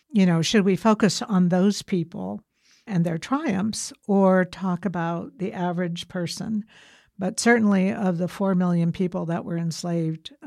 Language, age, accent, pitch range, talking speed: English, 60-79, American, 170-200 Hz, 155 wpm